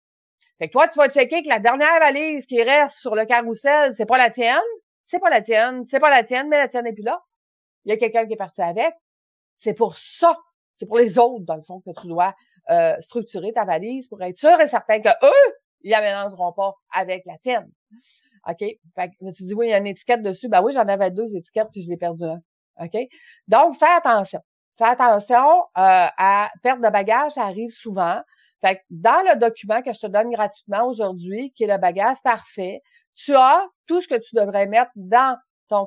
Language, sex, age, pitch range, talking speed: French, female, 30-49, 200-280 Hz, 235 wpm